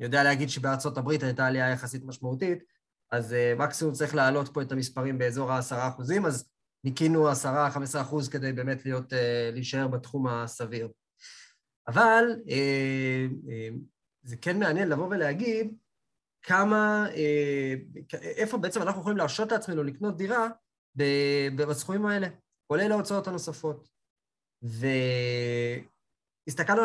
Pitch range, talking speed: 130-170 Hz, 125 wpm